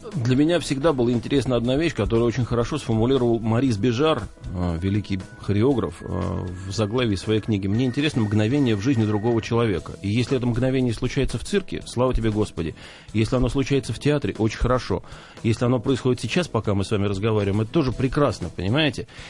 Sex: male